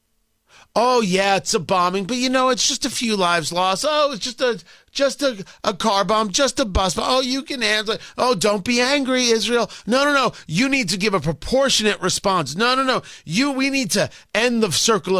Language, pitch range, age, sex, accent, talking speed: English, 165-255 Hz, 40-59, male, American, 225 wpm